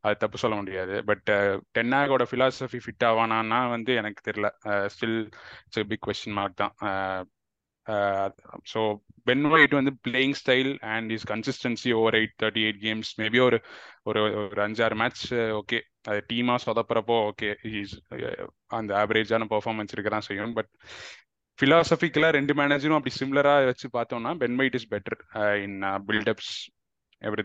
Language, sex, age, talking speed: Tamil, male, 20-39, 140 wpm